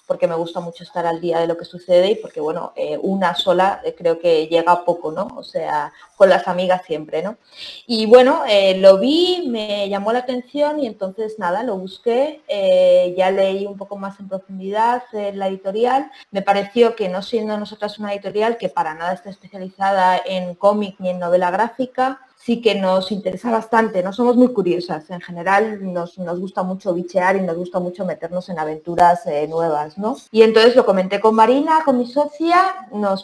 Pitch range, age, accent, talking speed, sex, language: 185-235 Hz, 20-39, Spanish, 195 wpm, female, Spanish